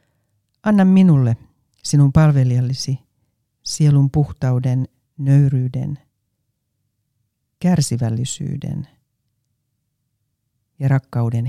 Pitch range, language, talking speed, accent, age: 115-145 Hz, Finnish, 50 wpm, native, 60-79